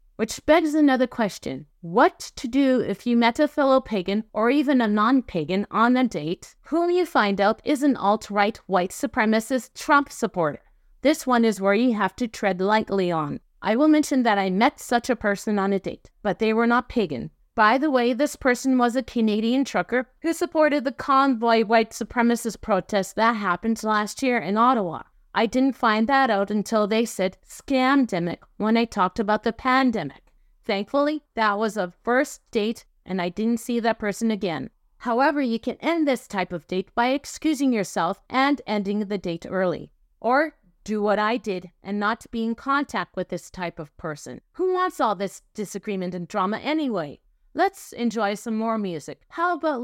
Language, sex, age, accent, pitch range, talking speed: English, female, 30-49, American, 200-260 Hz, 185 wpm